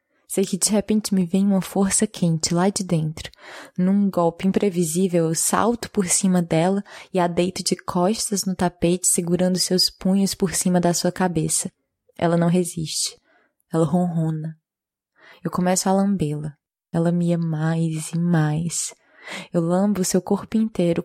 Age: 20-39